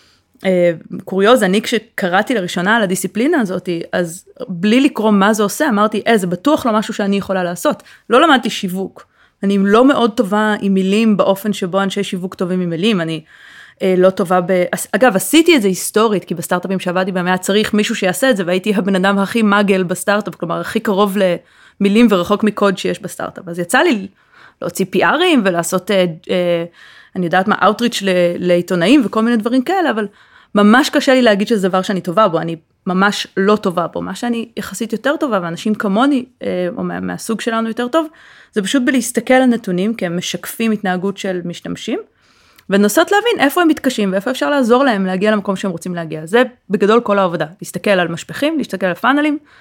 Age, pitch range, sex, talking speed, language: 30-49, 185-235 Hz, female, 180 wpm, Hebrew